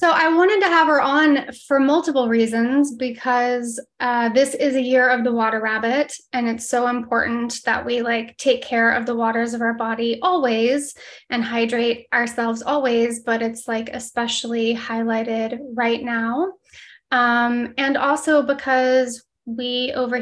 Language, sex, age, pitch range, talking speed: English, female, 20-39, 235-255 Hz, 155 wpm